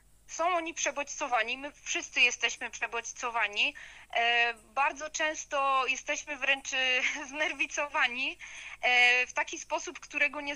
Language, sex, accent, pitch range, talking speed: Polish, female, native, 240-290 Hz, 95 wpm